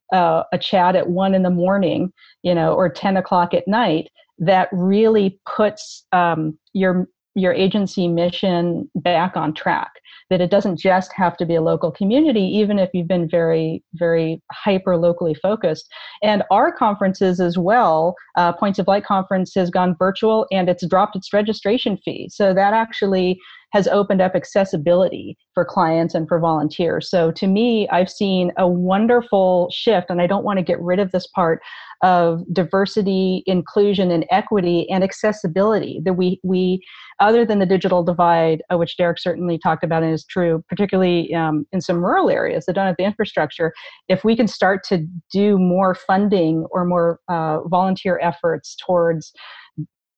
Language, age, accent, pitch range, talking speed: English, 40-59, American, 175-195 Hz, 170 wpm